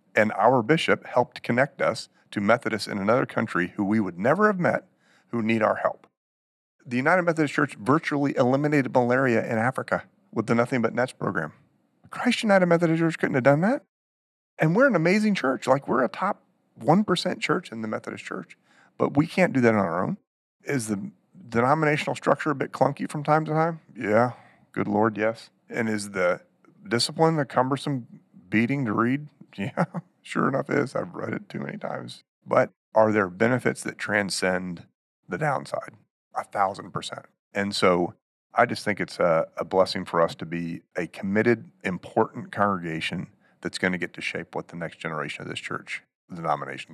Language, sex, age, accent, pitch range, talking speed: English, male, 40-59, American, 95-150 Hz, 185 wpm